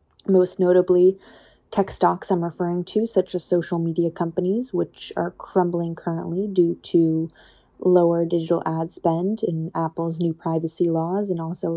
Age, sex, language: 20-39, female, English